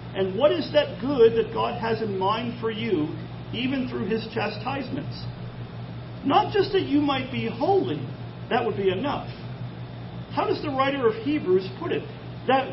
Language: English